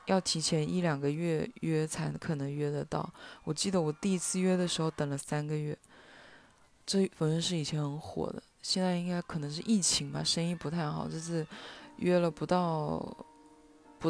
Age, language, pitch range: 20-39, Chinese, 155-205 Hz